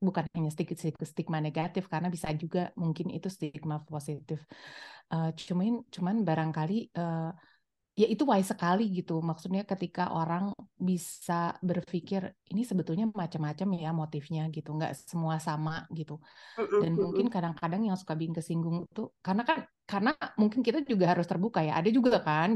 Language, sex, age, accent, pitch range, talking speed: Indonesian, female, 30-49, native, 170-210 Hz, 150 wpm